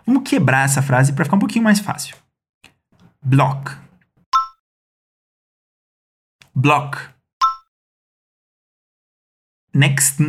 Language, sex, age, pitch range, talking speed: Portuguese, male, 50-69, 140-205 Hz, 75 wpm